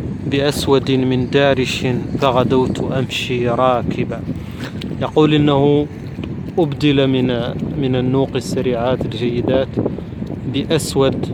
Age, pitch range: 30-49, 120-140 Hz